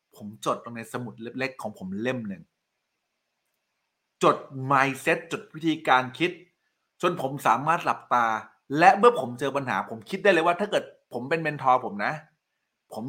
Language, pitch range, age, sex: Thai, 130-200 Hz, 20-39, male